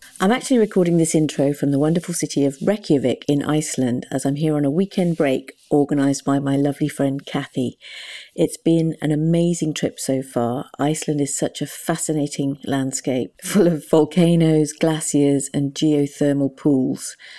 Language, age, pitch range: English, 40-59, 140-165 Hz